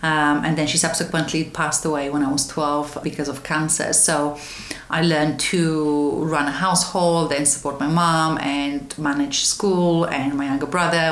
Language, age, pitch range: English, 30-49, 145-165 Hz